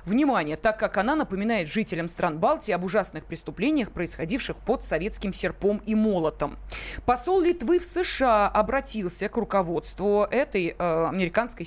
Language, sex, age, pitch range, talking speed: Russian, female, 20-39, 185-245 Hz, 140 wpm